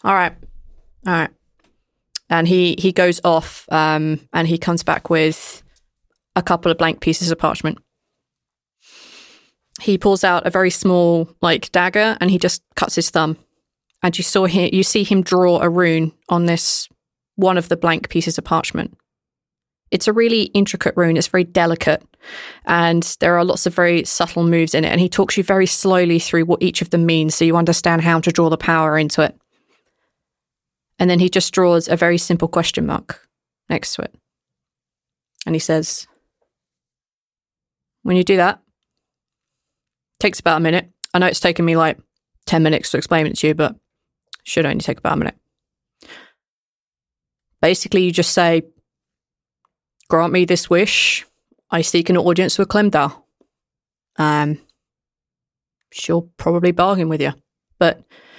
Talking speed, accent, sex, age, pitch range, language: 165 wpm, British, female, 20-39, 165-185 Hz, English